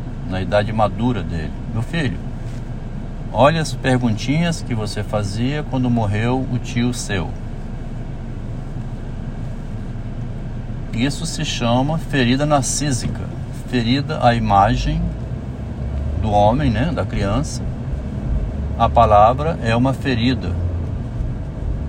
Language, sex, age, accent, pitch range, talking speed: Portuguese, male, 60-79, Brazilian, 105-125 Hz, 95 wpm